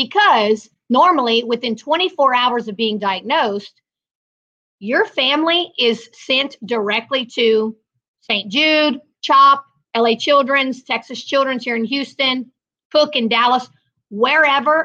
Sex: female